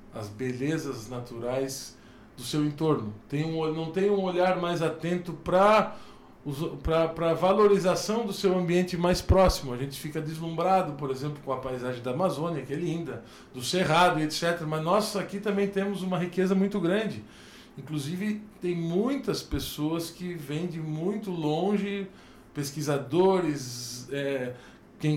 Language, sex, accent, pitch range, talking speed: Portuguese, male, Brazilian, 135-190 Hz, 145 wpm